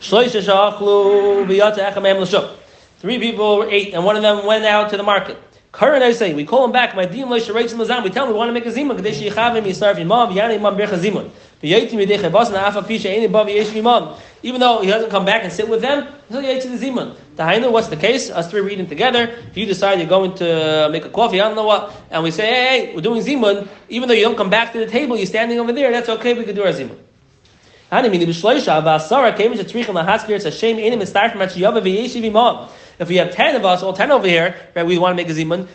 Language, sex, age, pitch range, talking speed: English, male, 30-49, 180-220 Hz, 165 wpm